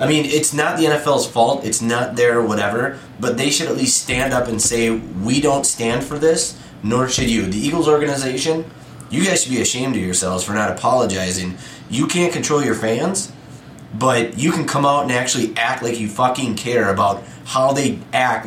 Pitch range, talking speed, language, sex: 110-150 Hz, 200 wpm, English, male